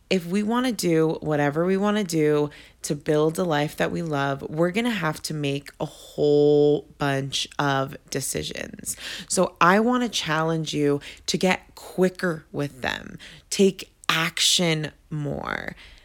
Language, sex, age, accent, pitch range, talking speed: English, female, 20-39, American, 155-195 Hz, 145 wpm